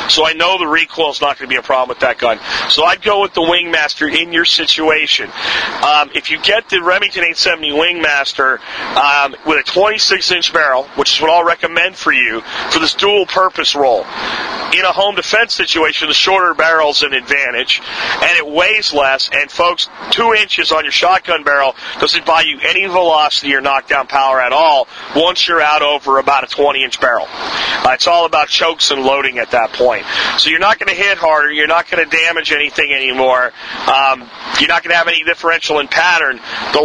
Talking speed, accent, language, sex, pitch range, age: 205 wpm, American, English, male, 140-175 Hz, 40-59